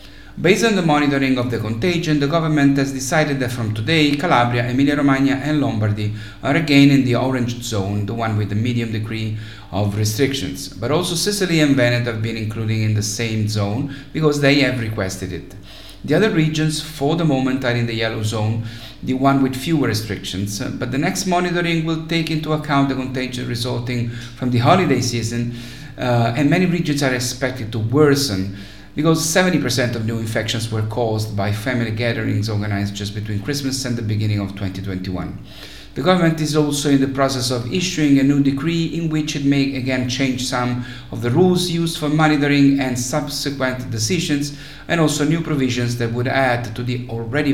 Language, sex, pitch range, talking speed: English, male, 110-145 Hz, 185 wpm